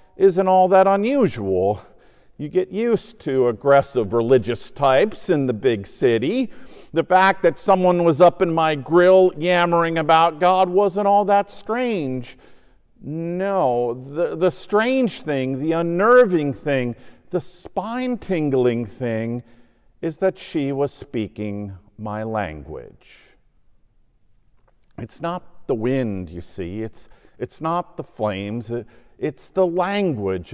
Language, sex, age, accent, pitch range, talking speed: English, male, 50-69, American, 120-185 Hz, 125 wpm